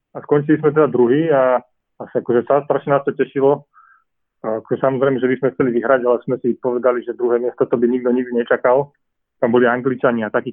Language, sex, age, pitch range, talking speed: Slovak, male, 30-49, 120-135 Hz, 210 wpm